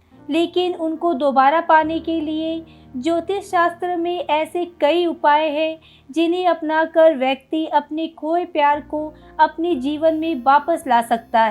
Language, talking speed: Hindi, 135 wpm